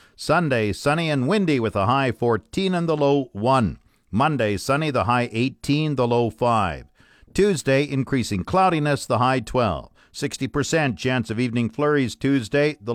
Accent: American